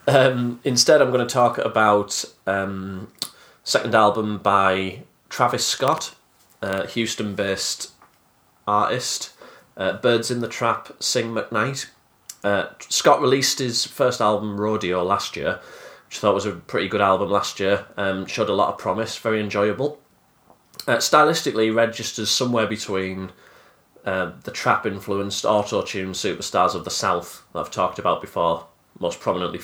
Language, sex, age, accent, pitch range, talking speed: English, male, 30-49, British, 95-110 Hz, 145 wpm